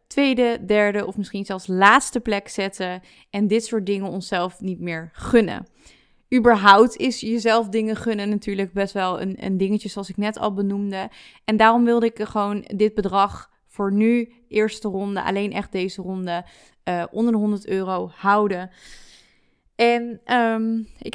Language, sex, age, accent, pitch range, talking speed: Dutch, female, 20-39, Dutch, 195-235 Hz, 155 wpm